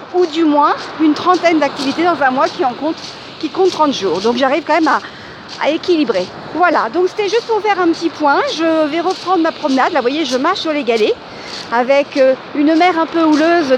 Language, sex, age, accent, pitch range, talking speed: French, female, 50-69, French, 290-350 Hz, 220 wpm